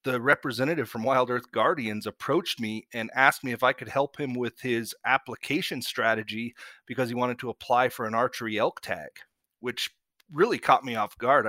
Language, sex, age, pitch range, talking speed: English, male, 40-59, 115-145 Hz, 190 wpm